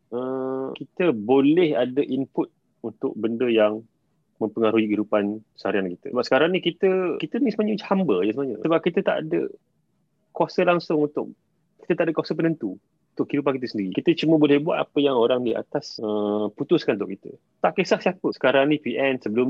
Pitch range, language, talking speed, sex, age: 110-160 Hz, Malay, 180 wpm, male, 30-49